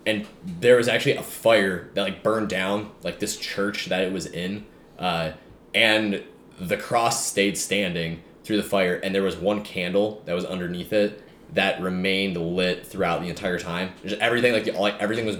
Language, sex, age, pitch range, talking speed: English, male, 20-39, 85-105 Hz, 180 wpm